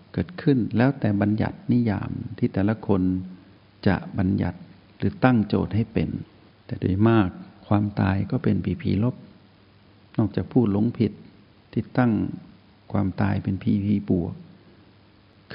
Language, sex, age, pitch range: Thai, male, 60-79, 95-115 Hz